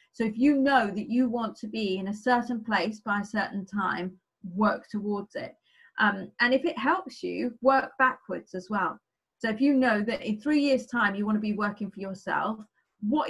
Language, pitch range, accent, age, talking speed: English, 205-250 Hz, British, 30-49, 210 wpm